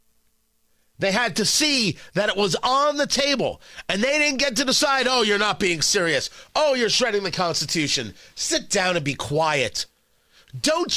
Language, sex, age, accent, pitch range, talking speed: English, male, 30-49, American, 175-250 Hz, 175 wpm